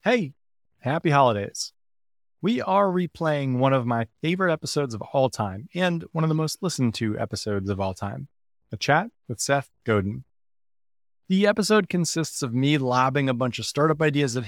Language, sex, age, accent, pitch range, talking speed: English, male, 30-49, American, 110-155 Hz, 175 wpm